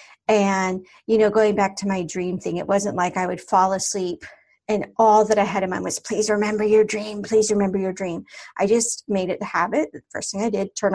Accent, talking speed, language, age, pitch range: American, 235 wpm, English, 40-59, 190-230 Hz